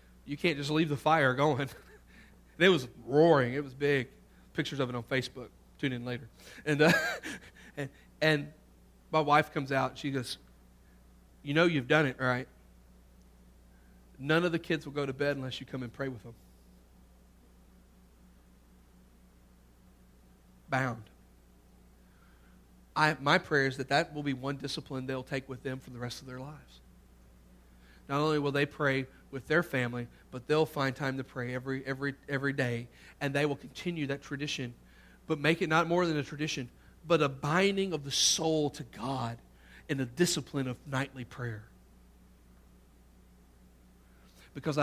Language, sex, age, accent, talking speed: English, male, 40-59, American, 165 wpm